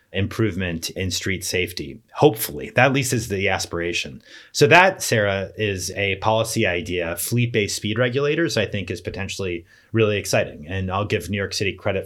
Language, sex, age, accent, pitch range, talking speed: English, male, 30-49, American, 95-120 Hz, 170 wpm